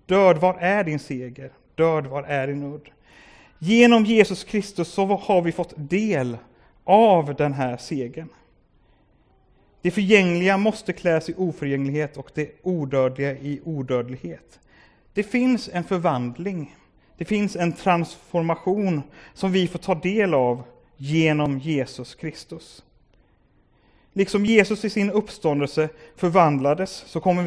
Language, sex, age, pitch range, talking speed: Swedish, male, 30-49, 140-185 Hz, 125 wpm